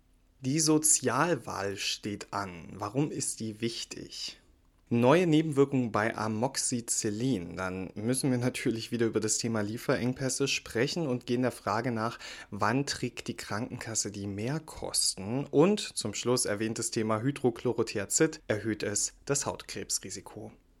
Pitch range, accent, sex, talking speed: 105-130 Hz, German, male, 125 wpm